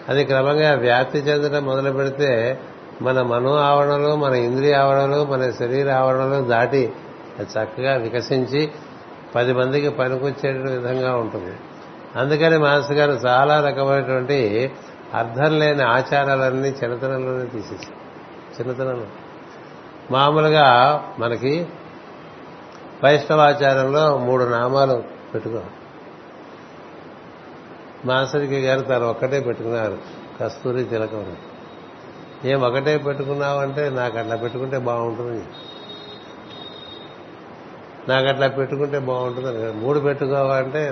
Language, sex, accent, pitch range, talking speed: Telugu, male, native, 125-140 Hz, 90 wpm